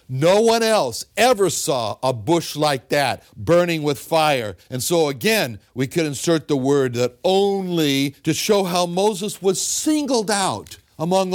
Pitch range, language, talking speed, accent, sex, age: 135-195 Hz, English, 160 wpm, American, male, 60-79